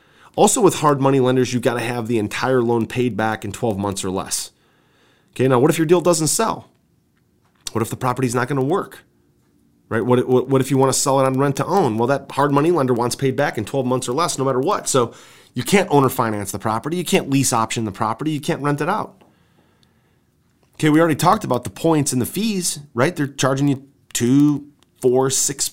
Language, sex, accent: English, male, American